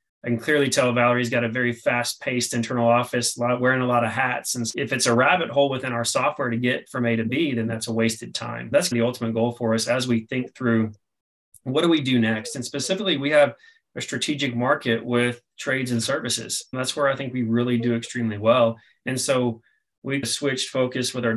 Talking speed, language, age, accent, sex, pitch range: 225 wpm, English, 30-49, American, male, 115-140 Hz